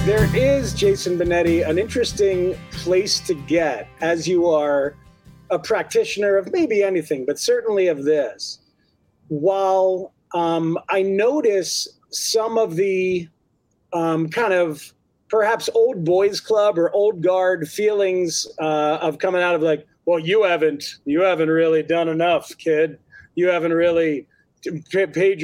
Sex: male